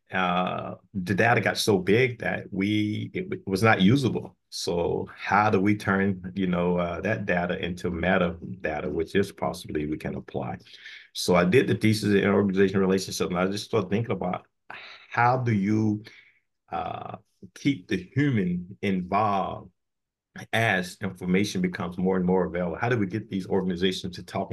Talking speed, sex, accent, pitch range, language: 170 wpm, male, American, 95-110 Hz, English